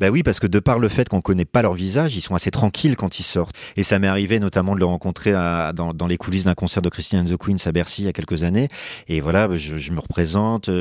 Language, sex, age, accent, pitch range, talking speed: French, male, 40-59, French, 95-125 Hz, 290 wpm